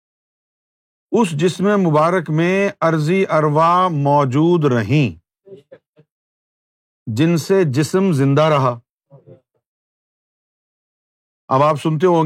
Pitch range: 135-170 Hz